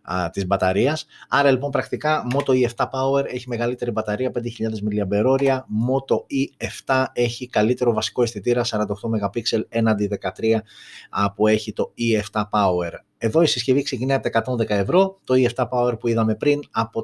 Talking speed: 140 wpm